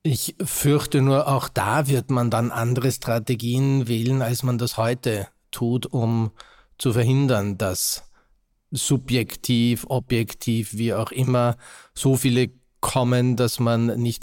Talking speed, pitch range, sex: 130 wpm, 105-125 Hz, male